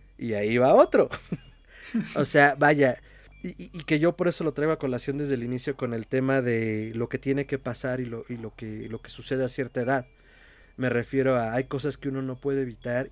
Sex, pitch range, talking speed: male, 115-135 Hz, 235 wpm